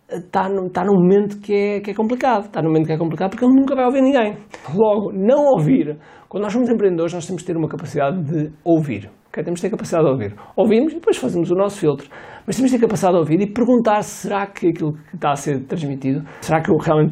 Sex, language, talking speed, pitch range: male, Portuguese, 255 wpm, 150-205 Hz